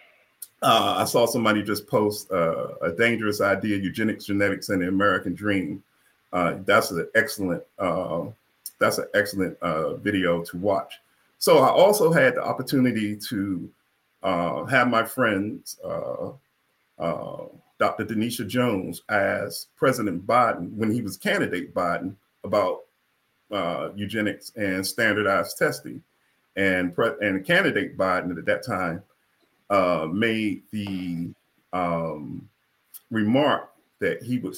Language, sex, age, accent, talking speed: English, male, 40-59, American, 130 wpm